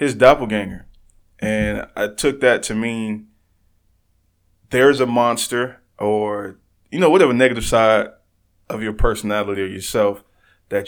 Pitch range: 95-110 Hz